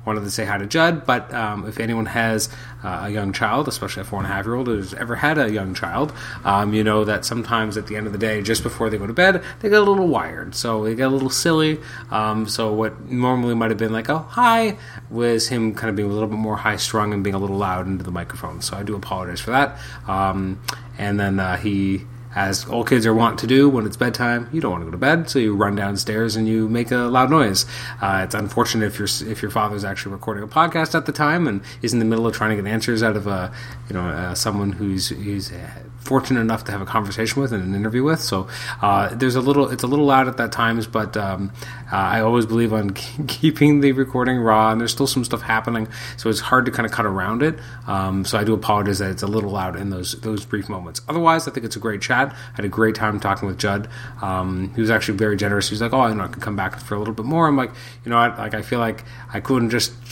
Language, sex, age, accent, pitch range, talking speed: English, male, 30-49, American, 100-125 Hz, 265 wpm